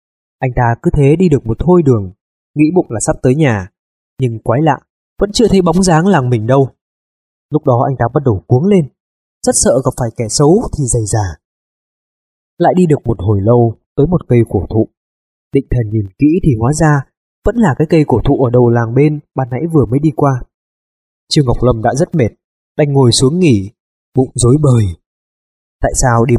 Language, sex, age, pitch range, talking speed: Vietnamese, male, 20-39, 115-155 Hz, 215 wpm